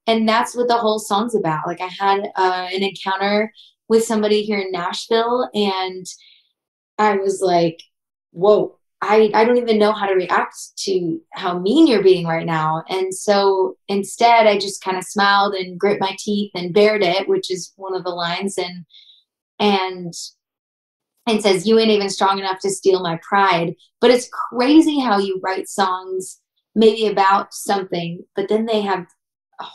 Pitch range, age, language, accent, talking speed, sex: 180-210 Hz, 20-39, English, American, 175 wpm, female